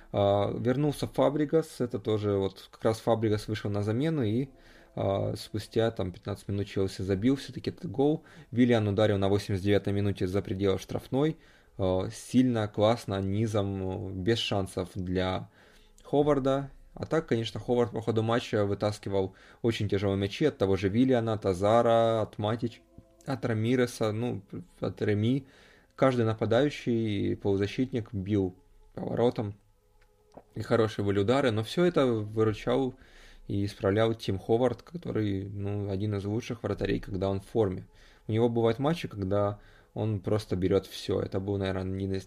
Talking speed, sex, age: 150 wpm, male, 20-39